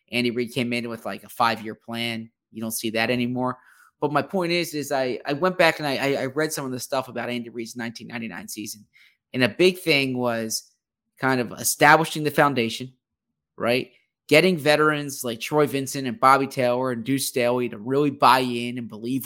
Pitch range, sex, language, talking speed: 120-150 Hz, male, English, 200 wpm